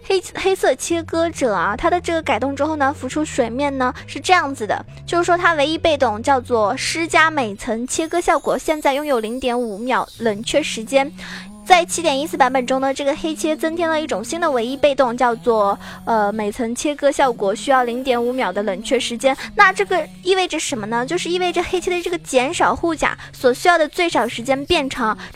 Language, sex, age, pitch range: Chinese, female, 20-39, 255-330 Hz